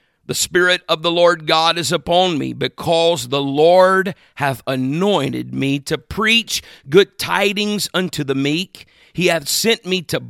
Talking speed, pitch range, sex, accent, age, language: 155 wpm, 155-200 Hz, male, American, 50-69, English